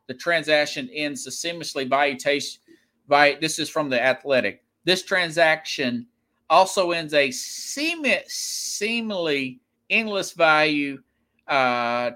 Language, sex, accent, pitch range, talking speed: English, male, American, 140-175 Hz, 115 wpm